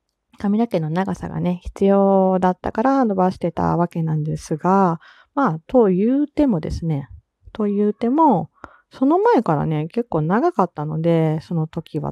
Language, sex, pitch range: Japanese, female, 165-225 Hz